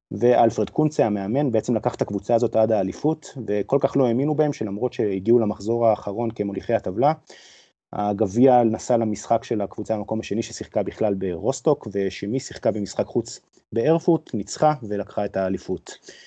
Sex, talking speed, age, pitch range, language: male, 150 wpm, 30-49, 100-120 Hz, Hebrew